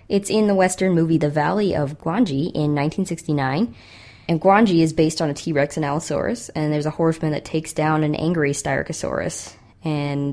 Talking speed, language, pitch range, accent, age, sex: 180 wpm, English, 145-170 Hz, American, 20-39, female